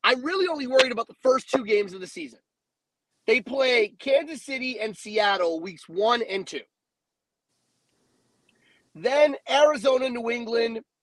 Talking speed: 140 wpm